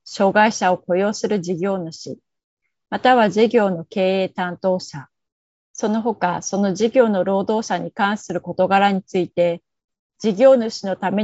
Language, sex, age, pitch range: Japanese, female, 30-49, 180-220 Hz